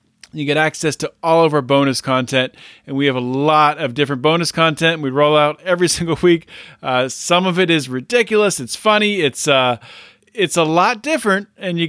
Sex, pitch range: male, 140-180 Hz